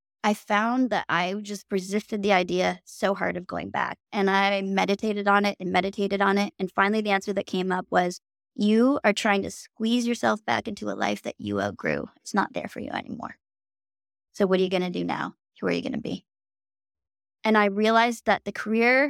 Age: 20-39